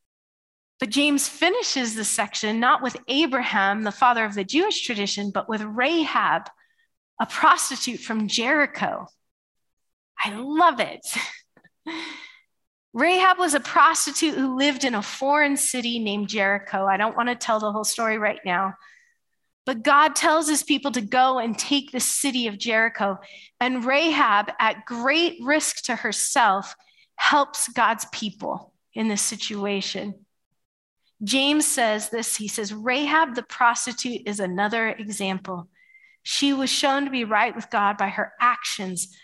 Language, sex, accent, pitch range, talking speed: English, female, American, 210-285 Hz, 145 wpm